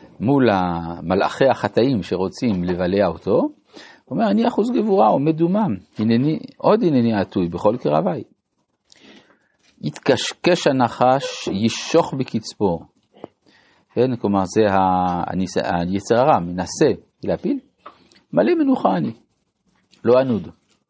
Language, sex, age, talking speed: Hebrew, male, 50-69, 95 wpm